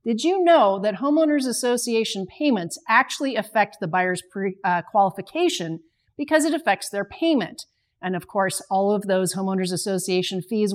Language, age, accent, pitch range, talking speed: English, 40-59, American, 185-255 Hz, 155 wpm